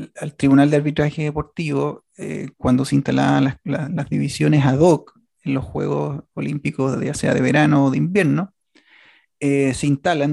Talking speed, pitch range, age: 170 wpm, 130-165 Hz, 30-49